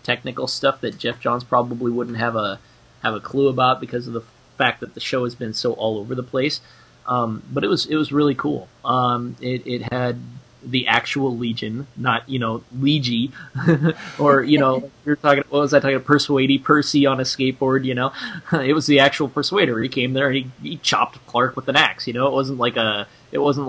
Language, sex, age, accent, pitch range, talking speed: English, male, 20-39, American, 115-140 Hz, 220 wpm